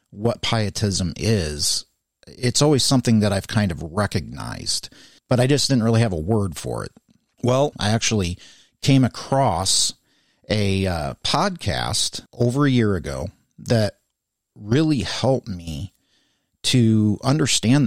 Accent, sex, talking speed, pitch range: American, male, 130 wpm, 95-125 Hz